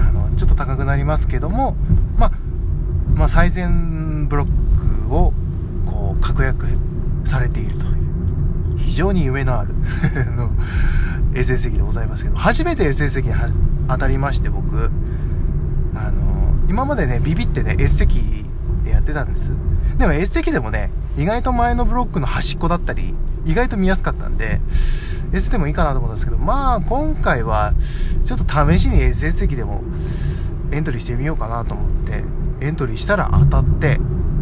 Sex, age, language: male, 20-39, Japanese